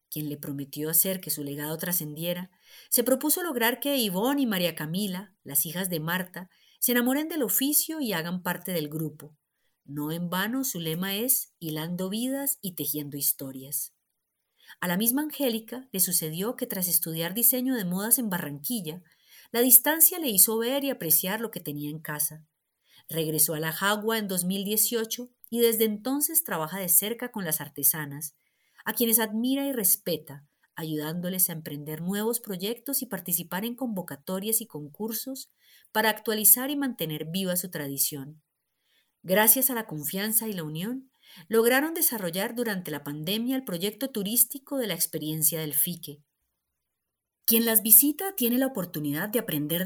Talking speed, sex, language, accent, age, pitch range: 160 wpm, female, Spanish, Colombian, 40-59, 155-230 Hz